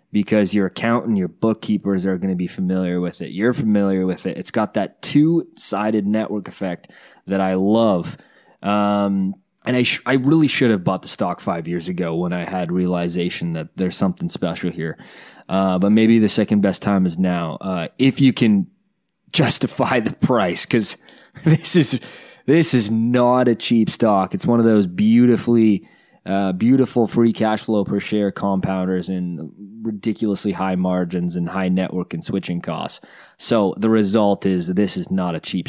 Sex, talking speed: male, 180 wpm